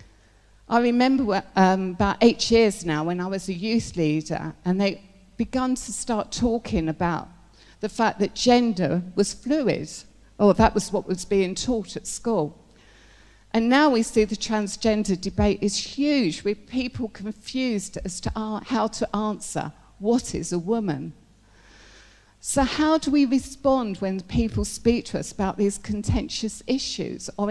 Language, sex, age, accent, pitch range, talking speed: English, female, 50-69, British, 155-220 Hz, 155 wpm